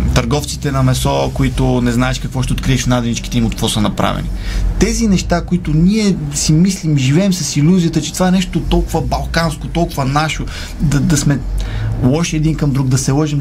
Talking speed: 190 wpm